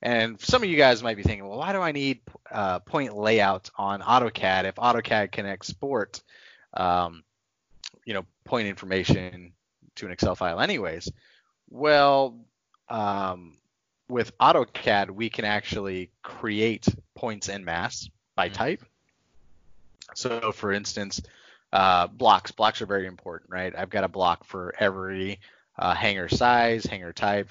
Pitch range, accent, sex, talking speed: 90-110 Hz, American, male, 145 wpm